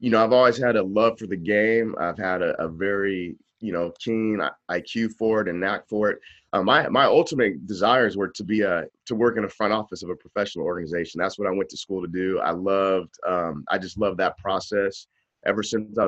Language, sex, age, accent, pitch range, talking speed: English, male, 30-49, American, 95-115 Hz, 235 wpm